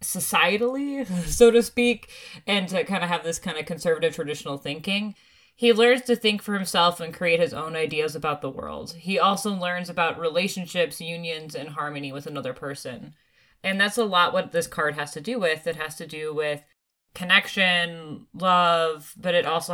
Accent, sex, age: American, female, 20-39